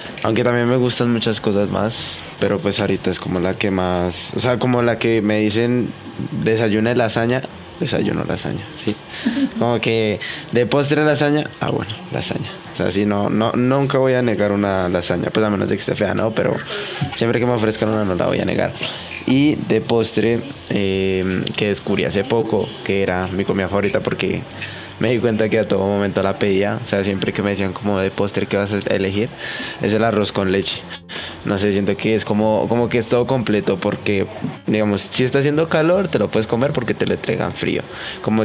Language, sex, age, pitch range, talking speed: Spanish, male, 20-39, 95-120 Hz, 210 wpm